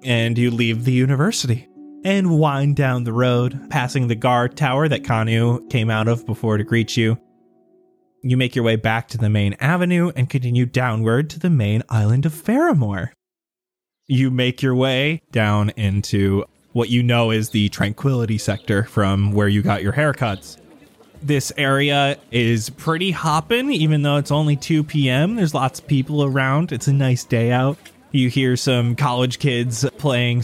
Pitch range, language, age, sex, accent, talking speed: 115-145 Hz, English, 20-39, male, American, 170 wpm